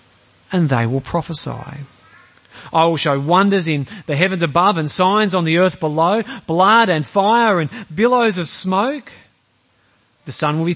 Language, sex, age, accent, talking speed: English, male, 40-59, Australian, 160 wpm